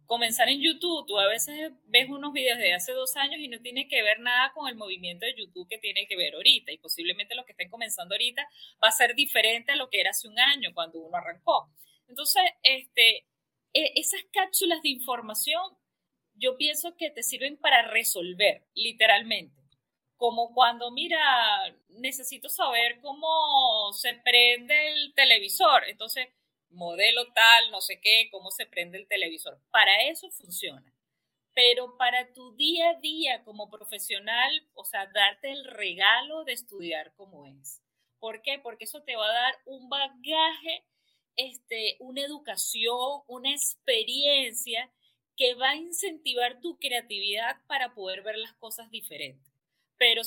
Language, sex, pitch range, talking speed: Spanish, female, 220-295 Hz, 160 wpm